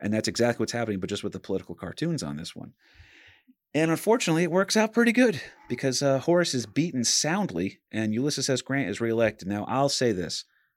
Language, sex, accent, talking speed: English, male, American, 205 wpm